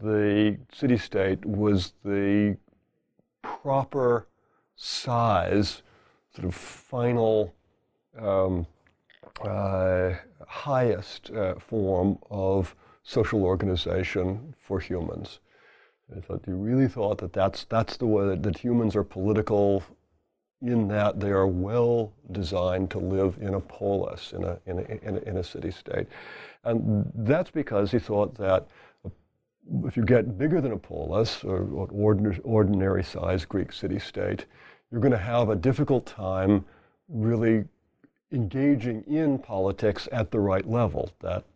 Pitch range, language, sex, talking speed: 95-115 Hz, English, male, 125 wpm